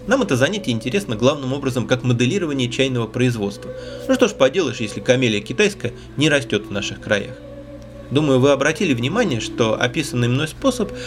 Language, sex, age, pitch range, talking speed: Russian, male, 30-49, 110-140 Hz, 165 wpm